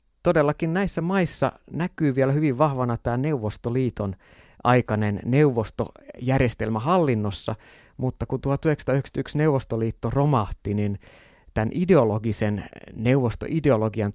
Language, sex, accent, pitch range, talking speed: Finnish, male, native, 105-130 Hz, 90 wpm